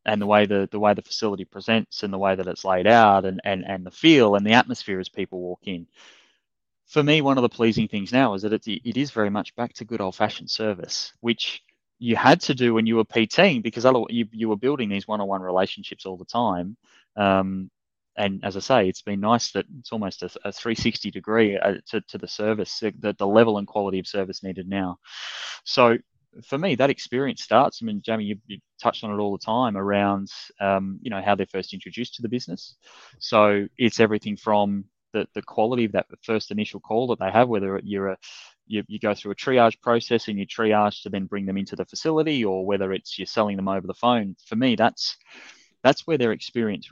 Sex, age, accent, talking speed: male, 20-39, Australian, 225 wpm